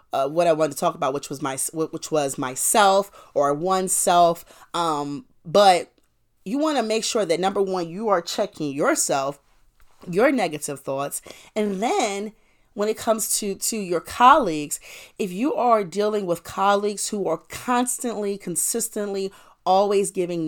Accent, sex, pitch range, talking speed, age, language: American, female, 155-215 Hz, 160 wpm, 30-49, English